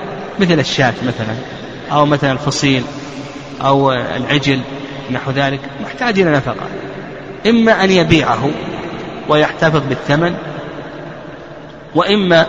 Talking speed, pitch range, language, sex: 90 wpm, 135-160 Hz, Arabic, male